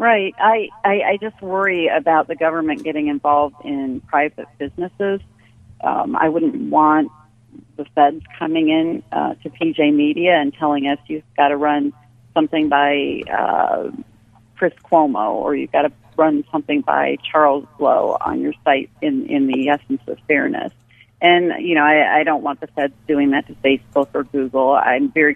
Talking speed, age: 175 wpm, 40-59